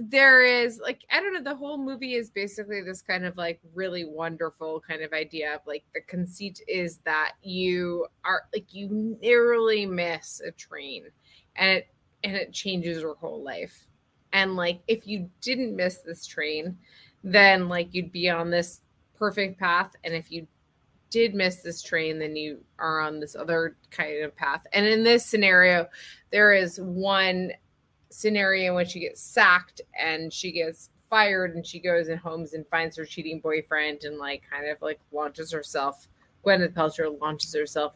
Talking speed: 175 wpm